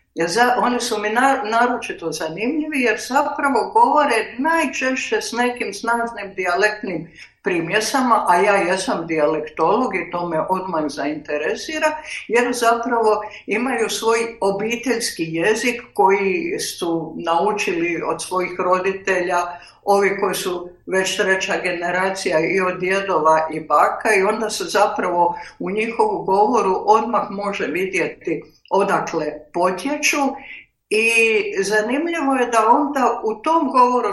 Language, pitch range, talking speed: Croatian, 180-245 Hz, 120 wpm